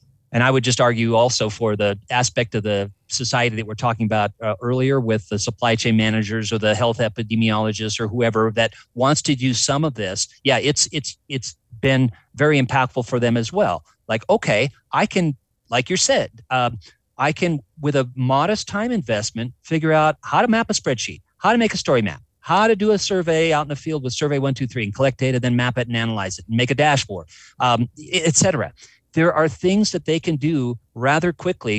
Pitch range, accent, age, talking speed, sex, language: 110-145 Hz, American, 40-59, 215 wpm, male, English